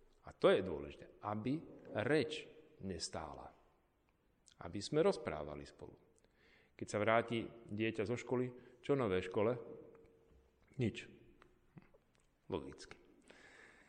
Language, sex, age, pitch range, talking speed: Slovak, male, 50-69, 95-130 Hz, 90 wpm